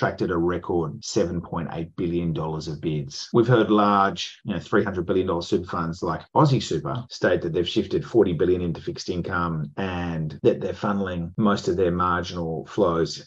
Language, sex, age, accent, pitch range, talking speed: English, male, 30-49, Australian, 85-100 Hz, 165 wpm